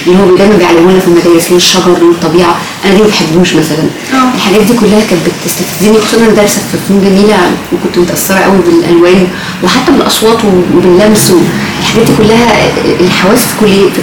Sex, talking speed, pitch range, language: female, 165 wpm, 175-210 Hz, Arabic